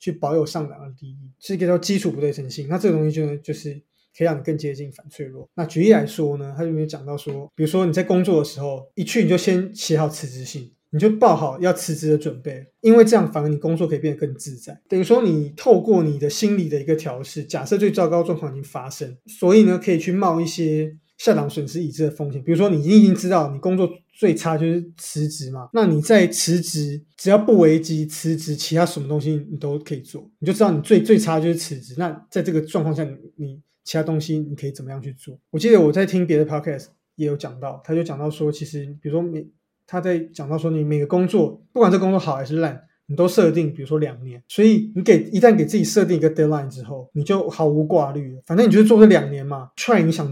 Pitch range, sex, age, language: 150-180 Hz, male, 20-39, Chinese